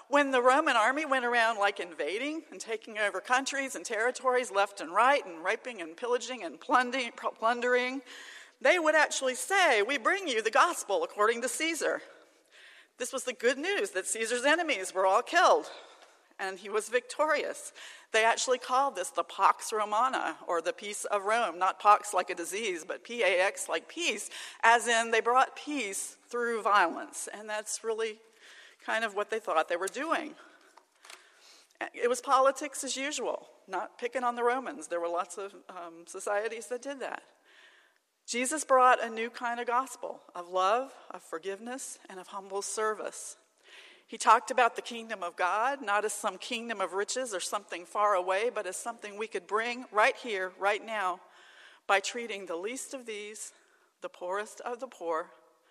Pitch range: 200-260 Hz